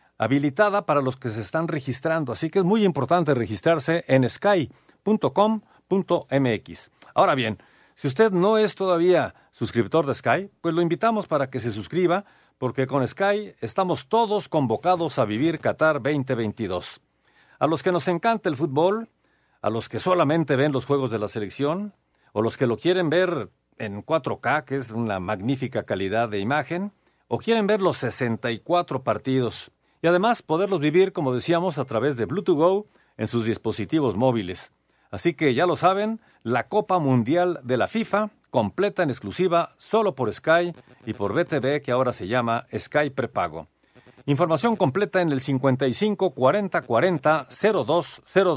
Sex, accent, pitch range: male, Mexican, 130-185 Hz